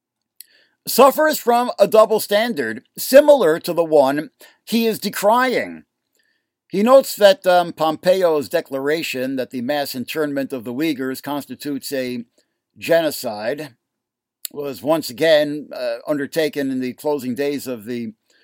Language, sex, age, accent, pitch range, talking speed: English, male, 60-79, American, 135-195 Hz, 125 wpm